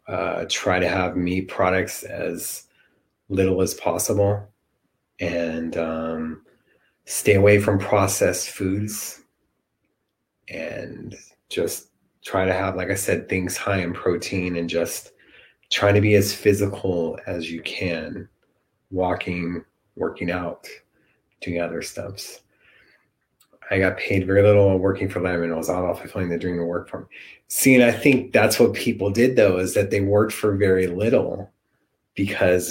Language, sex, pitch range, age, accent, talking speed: English, male, 85-100 Hz, 30-49, American, 150 wpm